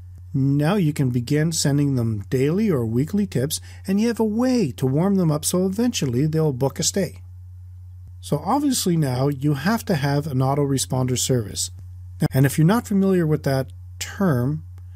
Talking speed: 175 wpm